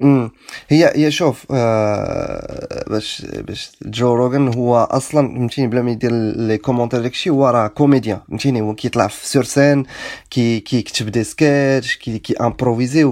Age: 20-39